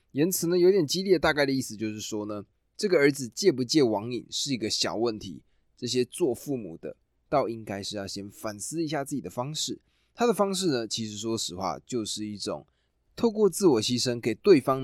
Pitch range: 105-145 Hz